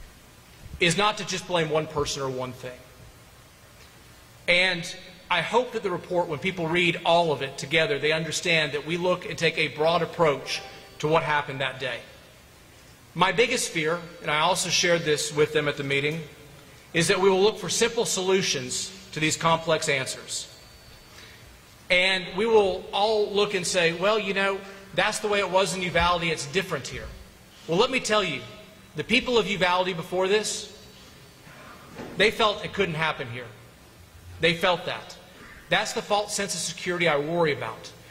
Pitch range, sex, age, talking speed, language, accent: 150-195 Hz, male, 40-59, 175 wpm, English, American